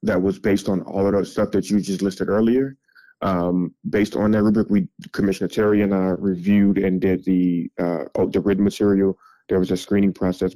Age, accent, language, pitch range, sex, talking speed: 20-39, American, English, 95-100 Hz, male, 205 wpm